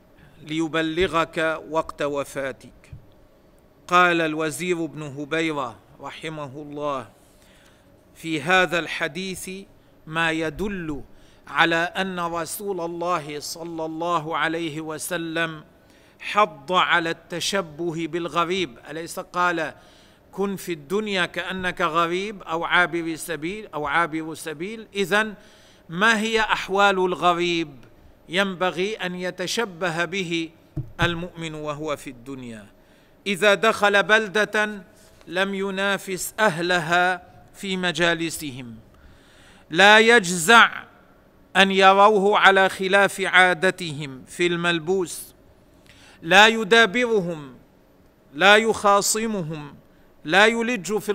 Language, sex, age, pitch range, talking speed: Arabic, male, 50-69, 160-195 Hz, 90 wpm